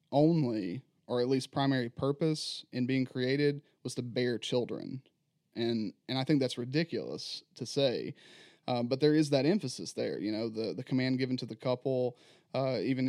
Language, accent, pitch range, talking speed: English, American, 120-135 Hz, 180 wpm